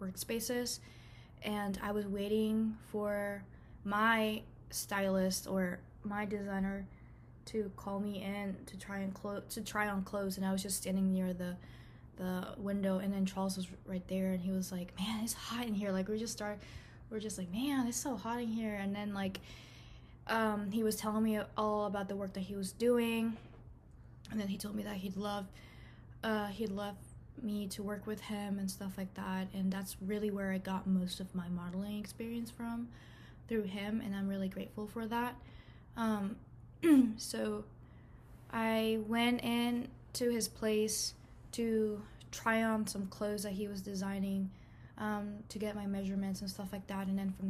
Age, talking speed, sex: 20-39, 185 wpm, female